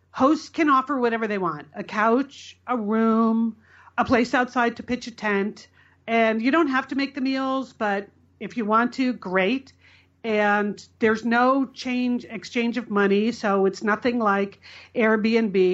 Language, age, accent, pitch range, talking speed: English, 40-59, American, 200-245 Hz, 165 wpm